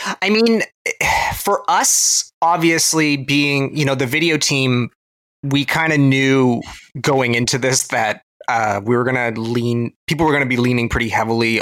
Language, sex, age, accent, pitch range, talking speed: English, male, 20-39, American, 110-145 Hz, 170 wpm